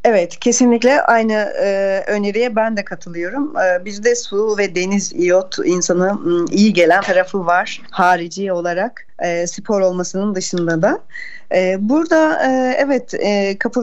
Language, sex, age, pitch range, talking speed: Turkish, female, 40-59, 190-240 Hz, 115 wpm